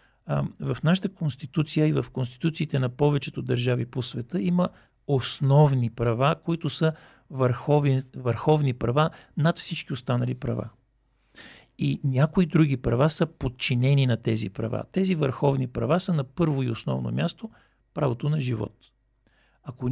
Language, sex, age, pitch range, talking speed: Bulgarian, male, 50-69, 125-160 Hz, 140 wpm